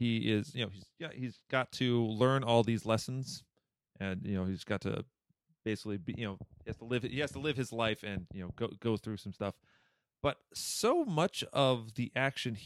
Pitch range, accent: 105-135 Hz, American